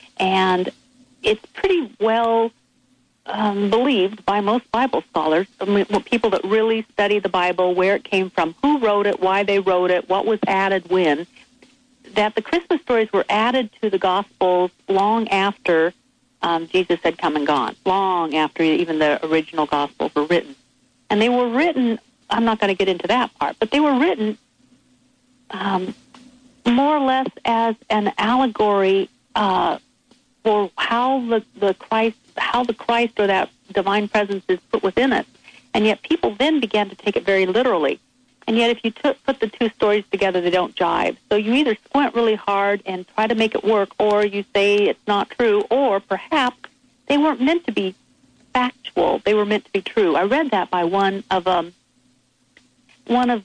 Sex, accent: female, American